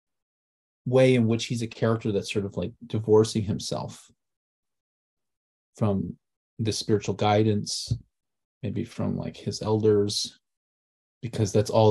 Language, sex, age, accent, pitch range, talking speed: English, male, 30-49, American, 105-120 Hz, 120 wpm